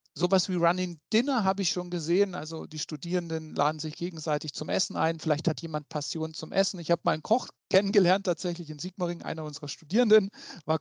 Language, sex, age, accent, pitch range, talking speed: English, male, 40-59, German, 155-190 Hz, 200 wpm